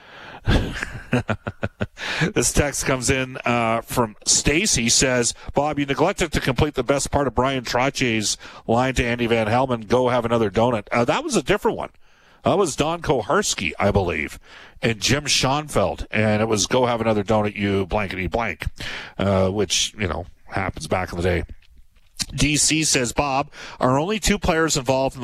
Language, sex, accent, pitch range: English, male, American, 105-130 Hz